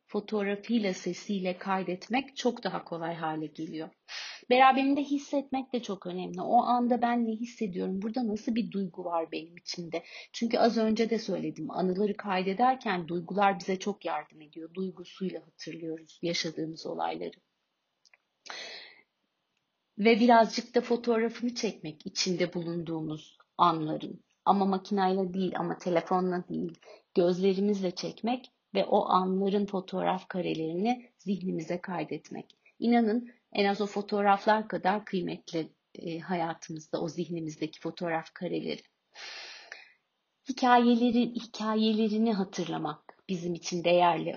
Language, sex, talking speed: Turkish, female, 110 wpm